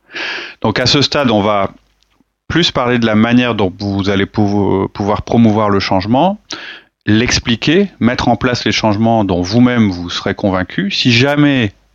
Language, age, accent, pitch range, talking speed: French, 30-49, French, 100-125 Hz, 155 wpm